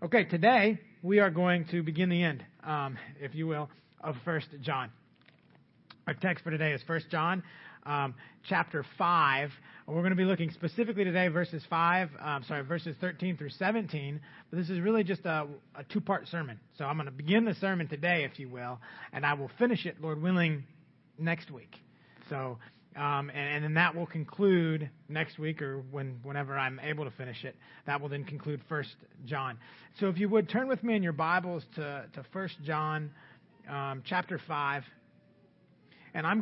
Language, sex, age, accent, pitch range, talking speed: English, male, 30-49, American, 145-180 Hz, 190 wpm